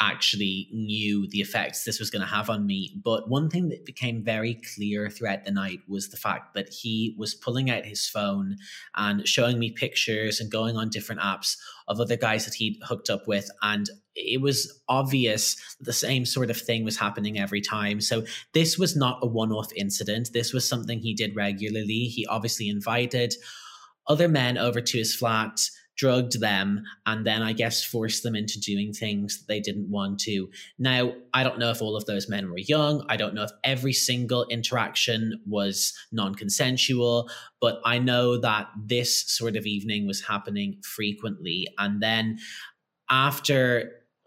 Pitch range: 105-125 Hz